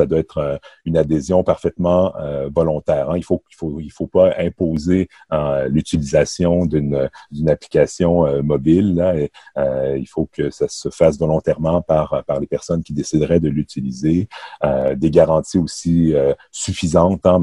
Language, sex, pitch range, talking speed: French, male, 75-90 Hz, 135 wpm